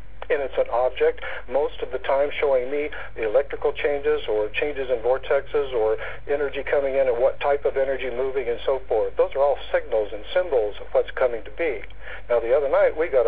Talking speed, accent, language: 210 wpm, American, English